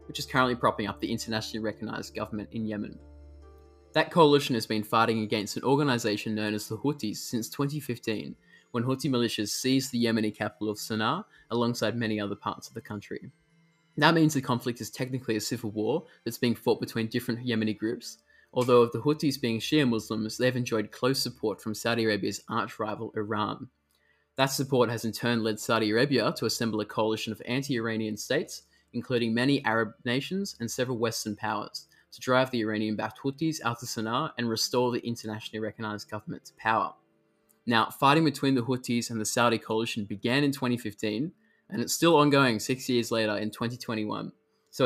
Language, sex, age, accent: English, male, 20-39, Australian